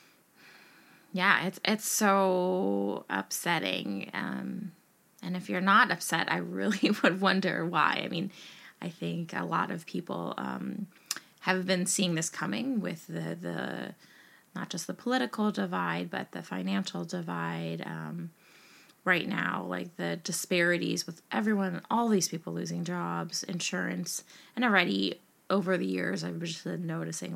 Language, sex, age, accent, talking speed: English, female, 20-39, American, 145 wpm